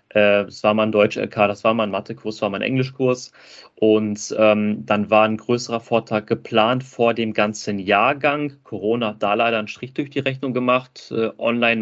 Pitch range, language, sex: 105-125 Hz, German, male